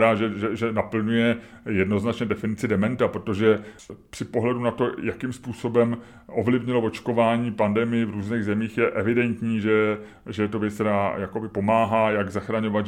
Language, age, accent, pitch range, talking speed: Czech, 30-49, native, 105-120 Hz, 140 wpm